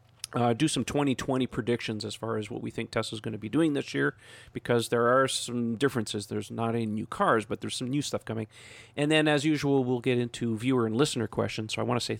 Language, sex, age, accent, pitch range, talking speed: English, male, 40-59, American, 115-135 Hz, 245 wpm